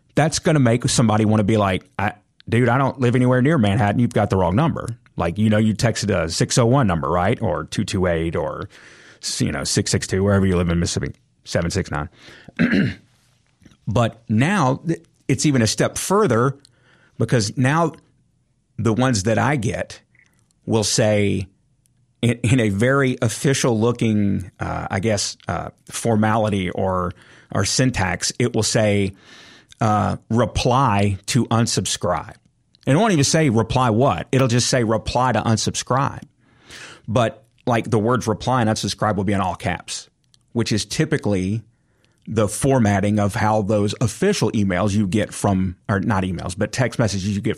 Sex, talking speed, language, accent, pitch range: male, 160 wpm, English, American, 100-125 Hz